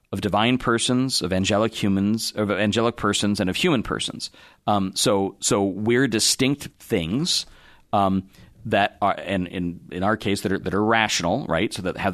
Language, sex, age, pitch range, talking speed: English, male, 40-59, 95-120 Hz, 180 wpm